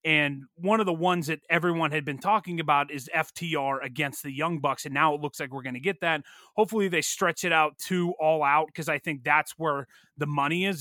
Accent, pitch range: American, 145-170 Hz